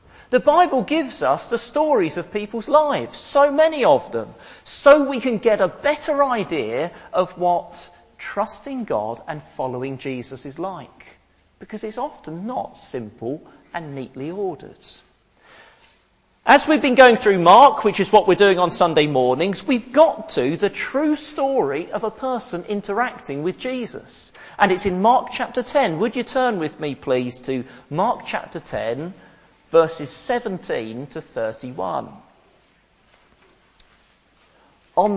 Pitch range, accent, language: 160-250 Hz, British, English